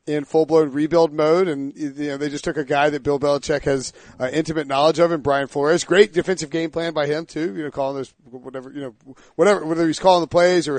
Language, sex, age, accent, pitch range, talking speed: English, male, 40-59, American, 145-175 Hz, 245 wpm